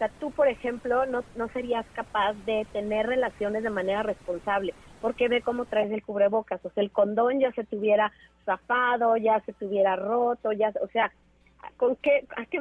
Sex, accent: female, Mexican